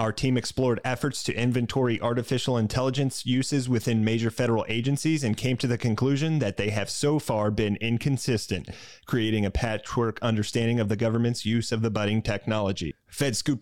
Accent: American